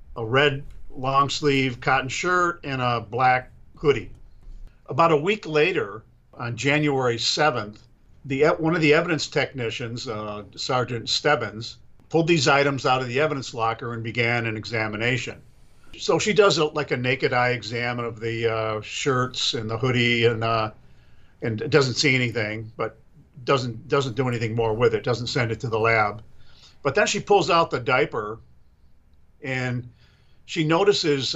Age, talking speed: 50-69, 160 wpm